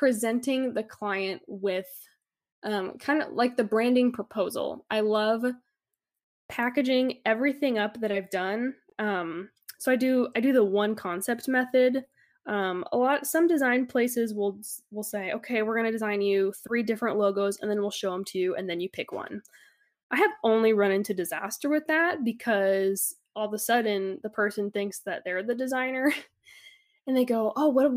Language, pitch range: English, 205-255 Hz